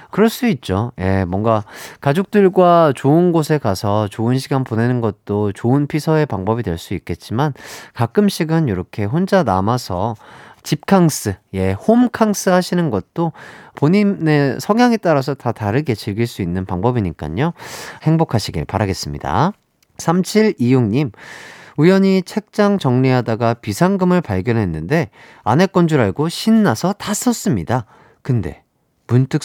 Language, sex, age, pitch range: Korean, male, 30-49, 105-175 Hz